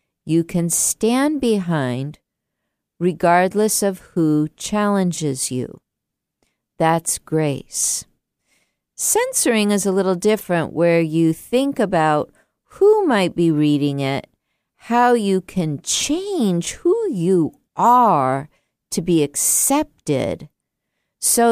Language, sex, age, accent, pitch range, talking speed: English, female, 50-69, American, 150-200 Hz, 100 wpm